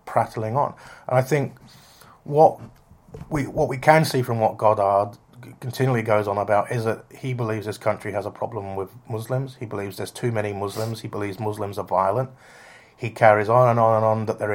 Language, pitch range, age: English, 105-125 Hz, 30-49